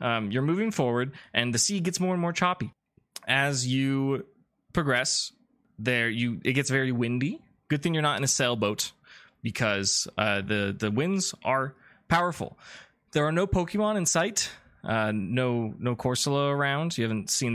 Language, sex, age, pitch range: English, male, 20-39, 115-165 Hz